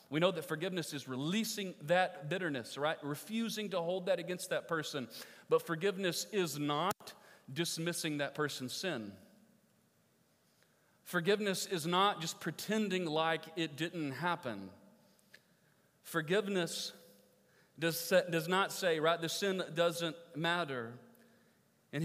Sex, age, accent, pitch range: male, 40-59, American, 150-190 Hz